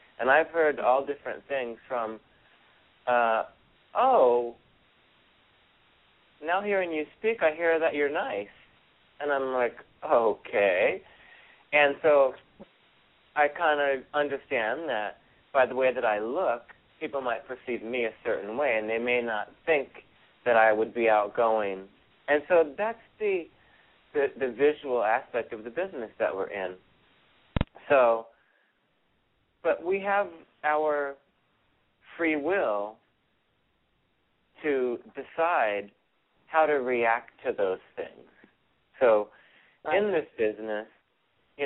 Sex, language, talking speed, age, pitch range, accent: male, English, 125 wpm, 30-49, 115-150 Hz, American